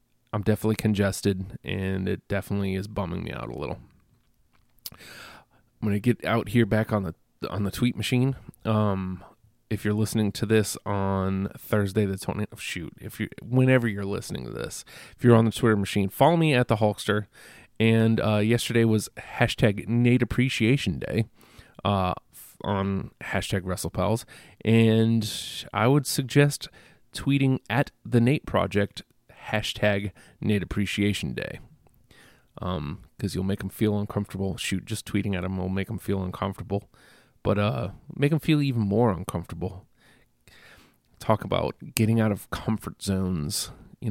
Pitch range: 100-115 Hz